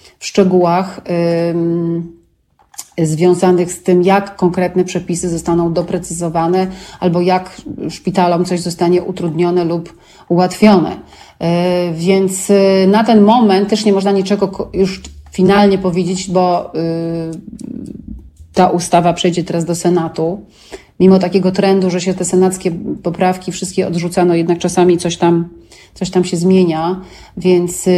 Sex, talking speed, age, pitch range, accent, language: female, 120 wpm, 30-49, 170-190 Hz, native, Polish